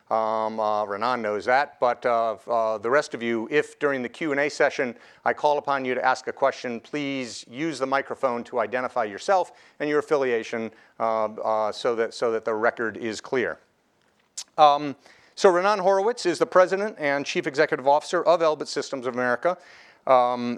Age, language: 50-69, English